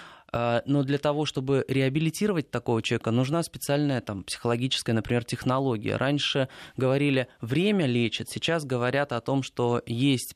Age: 20-39